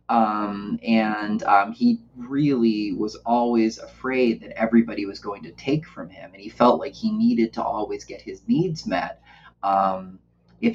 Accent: American